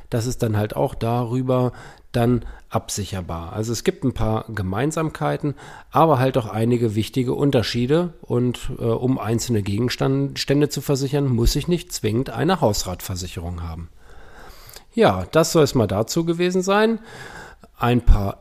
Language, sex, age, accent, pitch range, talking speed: German, male, 40-59, German, 110-145 Hz, 145 wpm